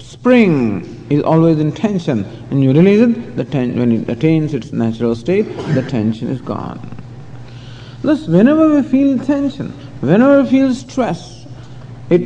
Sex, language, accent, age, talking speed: male, English, Indian, 50-69, 150 wpm